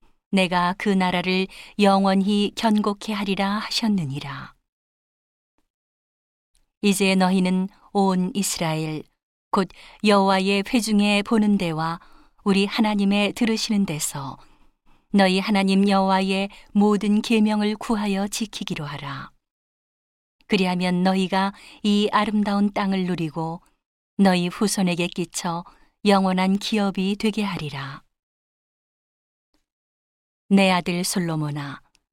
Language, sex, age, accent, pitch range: Korean, female, 40-59, native, 175-205 Hz